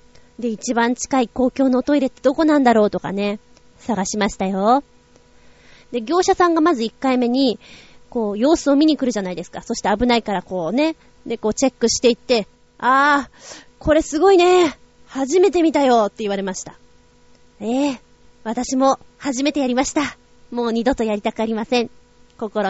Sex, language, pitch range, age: female, Japanese, 220-310 Hz, 20-39